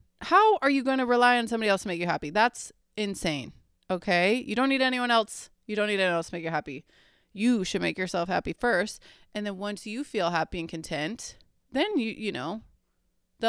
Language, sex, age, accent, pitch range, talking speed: English, female, 20-39, American, 185-225 Hz, 220 wpm